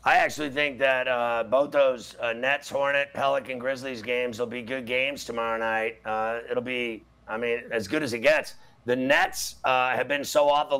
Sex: male